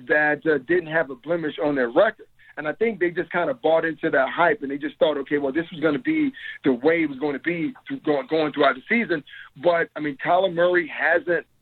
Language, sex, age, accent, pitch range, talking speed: English, male, 40-59, American, 145-180 Hz, 250 wpm